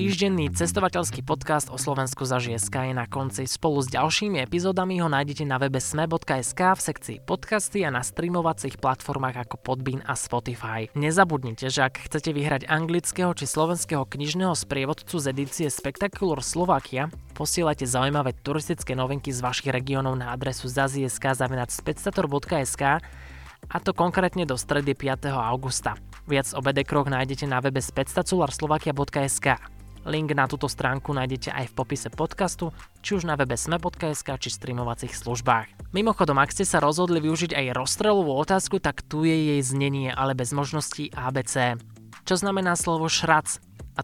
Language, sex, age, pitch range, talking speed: Slovak, male, 20-39, 130-160 Hz, 145 wpm